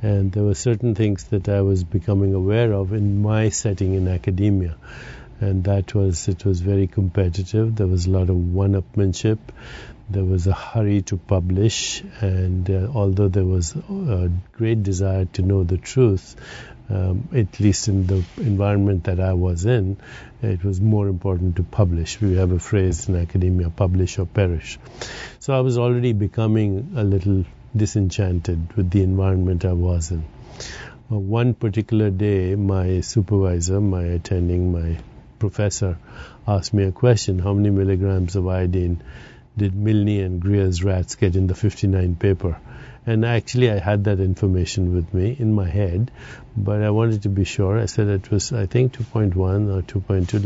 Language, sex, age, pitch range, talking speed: English, male, 50-69, 95-110 Hz, 165 wpm